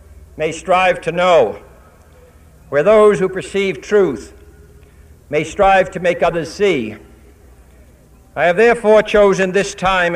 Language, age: English, 60-79